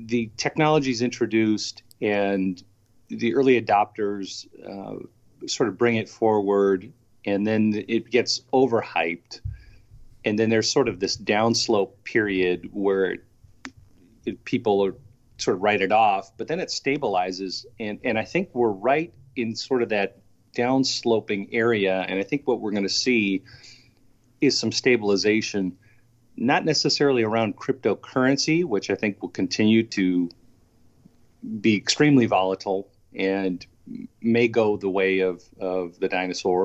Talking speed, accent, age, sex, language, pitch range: 135 wpm, American, 40-59, male, English, 95-120 Hz